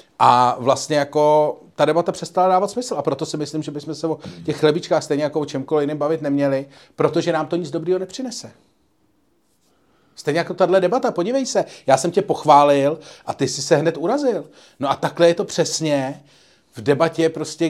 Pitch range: 115-165 Hz